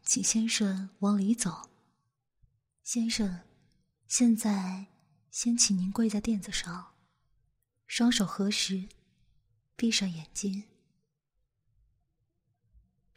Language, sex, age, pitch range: Chinese, female, 20-39, 130-220 Hz